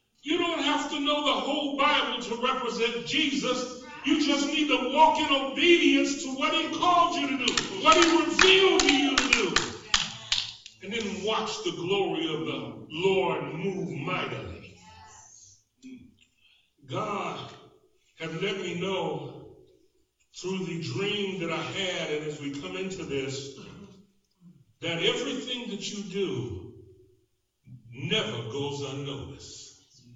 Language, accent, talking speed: English, American, 130 wpm